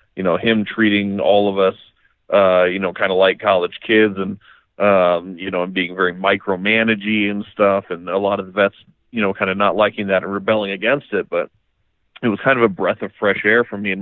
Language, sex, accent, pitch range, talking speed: English, male, American, 95-110 Hz, 235 wpm